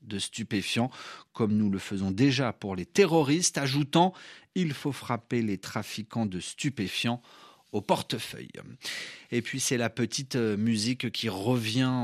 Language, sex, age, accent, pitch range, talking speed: French, male, 40-59, French, 115-175 Hz, 150 wpm